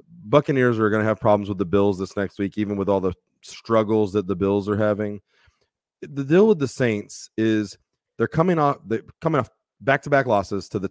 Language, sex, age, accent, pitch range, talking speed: English, male, 30-49, American, 105-140 Hz, 220 wpm